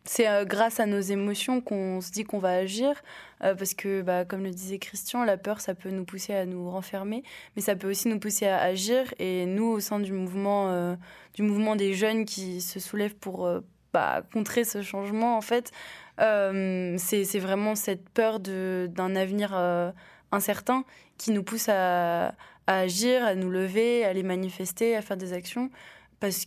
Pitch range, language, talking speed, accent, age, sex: 185-215 Hz, French, 195 wpm, French, 20-39, female